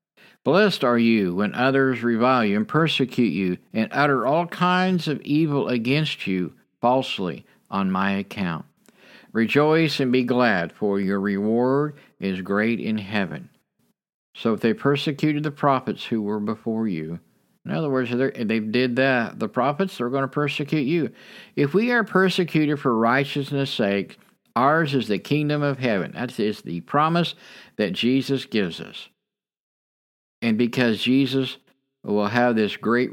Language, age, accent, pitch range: English, 50-69, American, 105-140 Hz